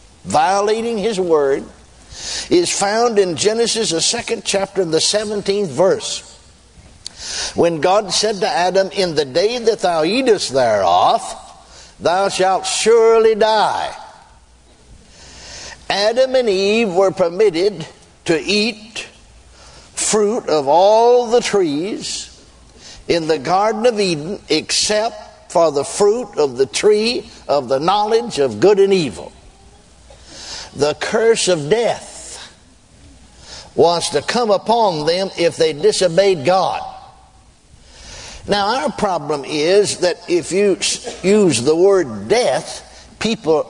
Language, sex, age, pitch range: English, male, 60-79, 170-230 Hz